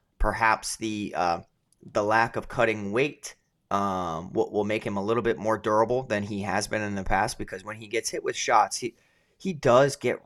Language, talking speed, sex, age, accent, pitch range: English, 210 wpm, male, 20-39, American, 105-120 Hz